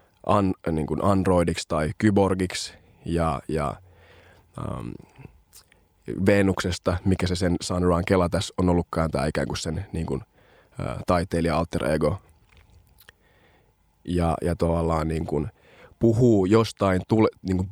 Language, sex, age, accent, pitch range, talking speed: Finnish, male, 20-39, native, 90-110 Hz, 130 wpm